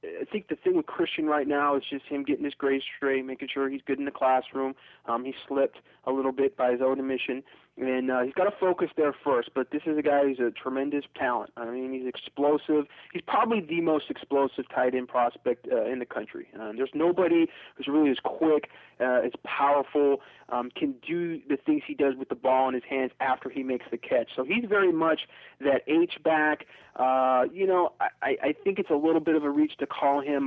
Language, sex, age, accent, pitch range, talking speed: English, male, 30-49, American, 130-180 Hz, 225 wpm